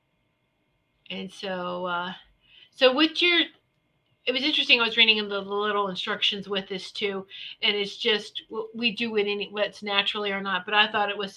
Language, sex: English, female